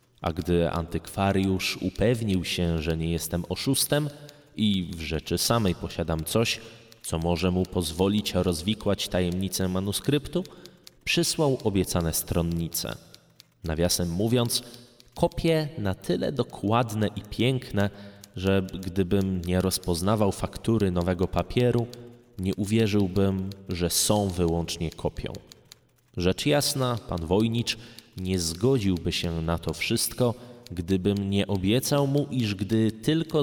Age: 20-39